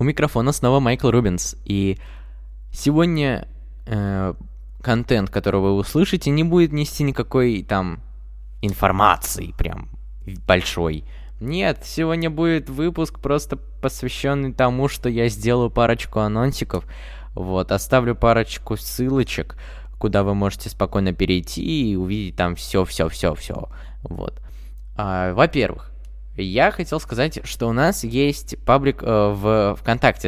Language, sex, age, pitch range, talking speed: Russian, male, 20-39, 90-130 Hz, 125 wpm